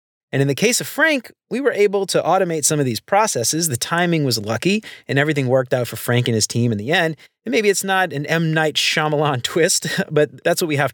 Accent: American